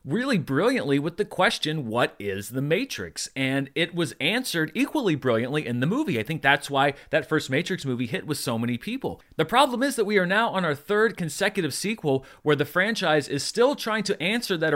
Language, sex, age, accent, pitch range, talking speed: English, male, 30-49, American, 140-190 Hz, 210 wpm